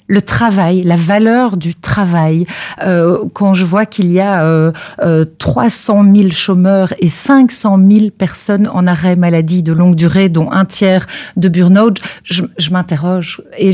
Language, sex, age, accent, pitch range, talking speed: French, female, 40-59, French, 185-220 Hz, 165 wpm